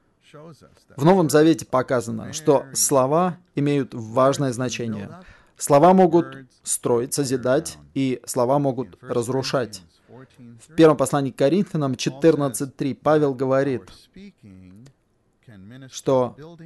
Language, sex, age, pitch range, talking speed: Russian, male, 30-49, 120-155 Hz, 95 wpm